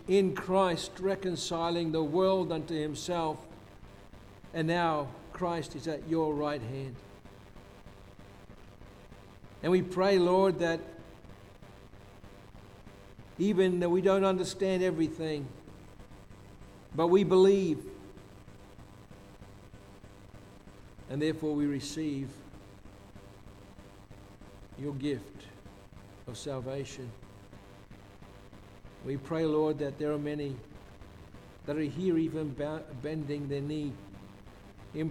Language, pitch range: English, 100-160 Hz